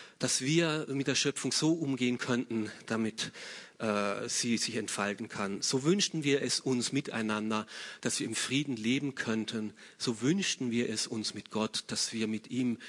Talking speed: 170 wpm